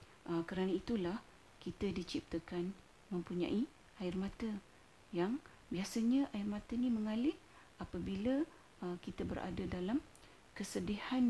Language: Malay